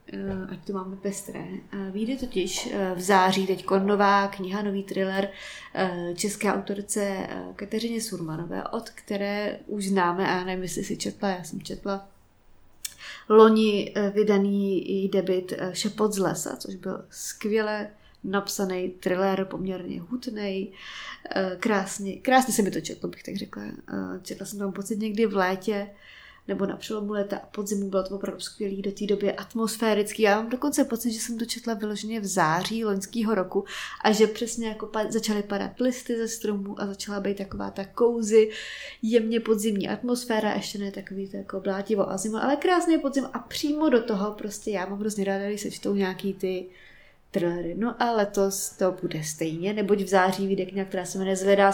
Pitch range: 190-220 Hz